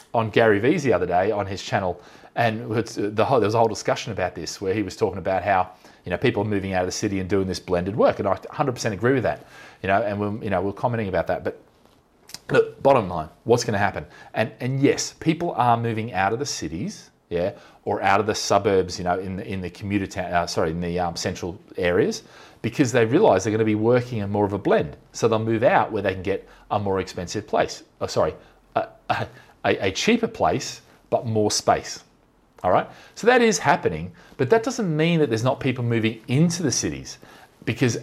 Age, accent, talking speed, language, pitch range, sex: 30-49, Australian, 230 wpm, English, 95-130 Hz, male